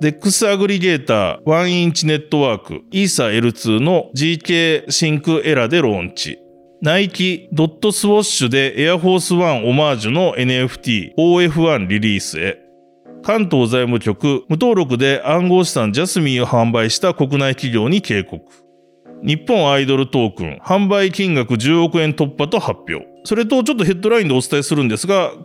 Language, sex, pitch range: Japanese, male, 125-185 Hz